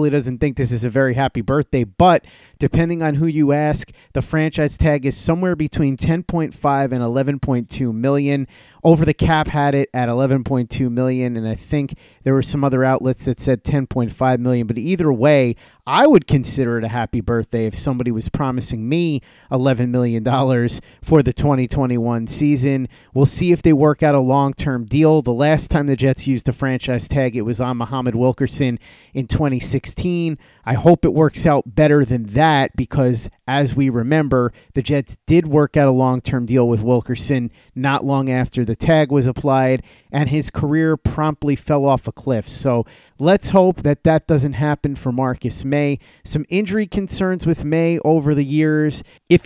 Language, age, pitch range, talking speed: English, 30-49, 125-150 Hz, 175 wpm